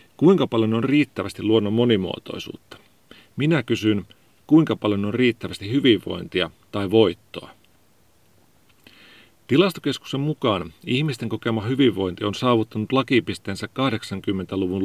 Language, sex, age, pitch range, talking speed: Finnish, male, 40-59, 105-130 Hz, 95 wpm